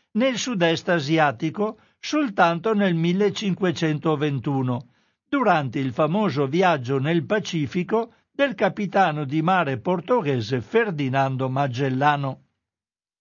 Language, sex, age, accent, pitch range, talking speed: Italian, male, 60-79, native, 145-200 Hz, 85 wpm